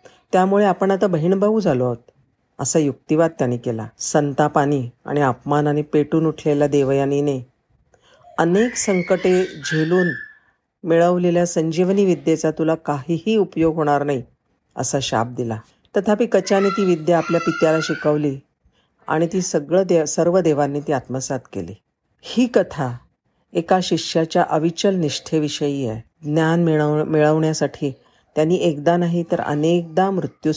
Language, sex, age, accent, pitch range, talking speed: Marathi, female, 50-69, native, 145-180 Hz, 120 wpm